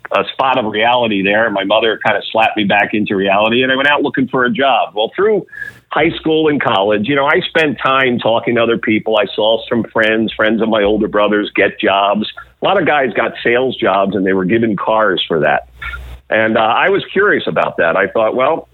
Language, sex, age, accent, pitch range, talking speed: English, male, 50-69, American, 105-130 Hz, 230 wpm